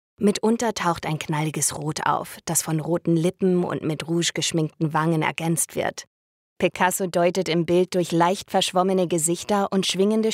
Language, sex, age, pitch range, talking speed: English, female, 20-39, 155-190 Hz, 155 wpm